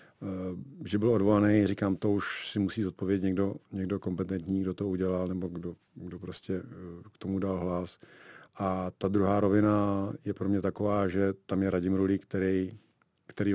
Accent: native